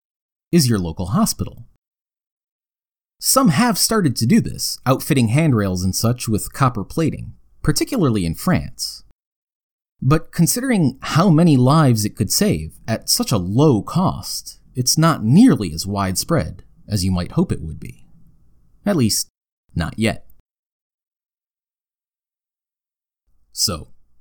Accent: American